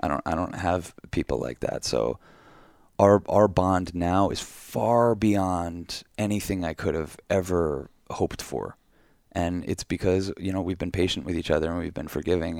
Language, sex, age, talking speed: English, male, 20-39, 180 wpm